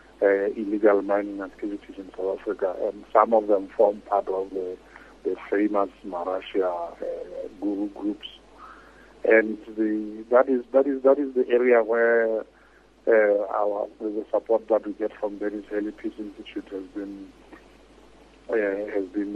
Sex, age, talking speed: male, 50-69, 150 wpm